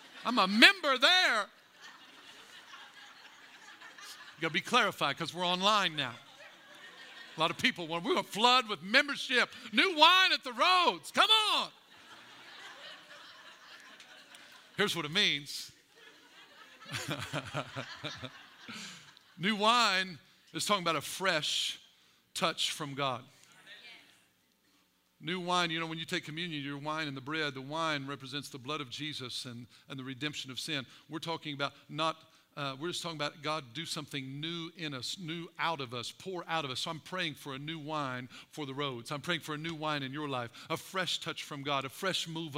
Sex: male